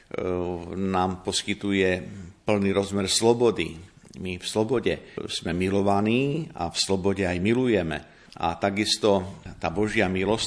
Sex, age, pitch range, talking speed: male, 50-69, 90-110 Hz, 115 wpm